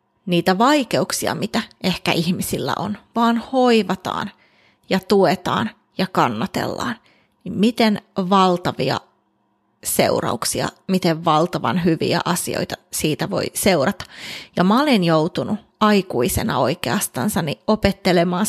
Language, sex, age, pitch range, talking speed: Finnish, female, 30-49, 180-215 Hz, 95 wpm